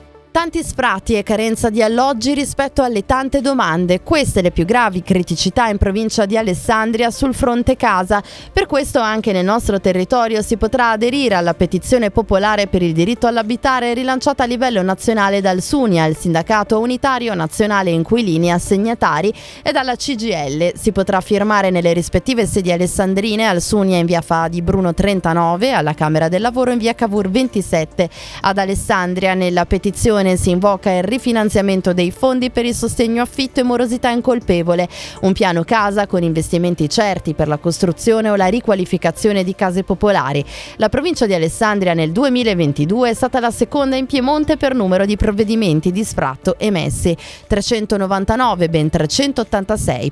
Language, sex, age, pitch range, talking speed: Italian, female, 20-39, 175-235 Hz, 155 wpm